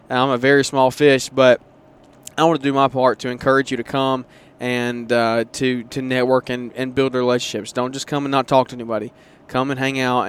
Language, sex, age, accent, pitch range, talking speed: English, male, 20-39, American, 120-135 Hz, 220 wpm